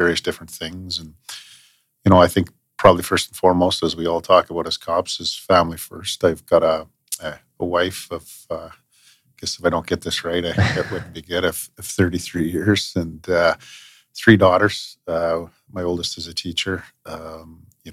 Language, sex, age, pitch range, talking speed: English, male, 40-59, 80-90 Hz, 190 wpm